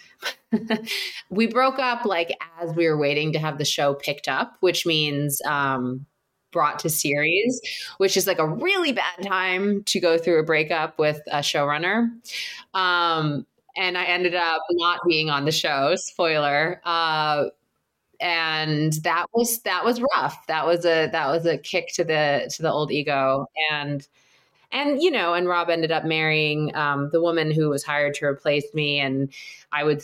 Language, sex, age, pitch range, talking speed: English, female, 20-39, 145-180 Hz, 175 wpm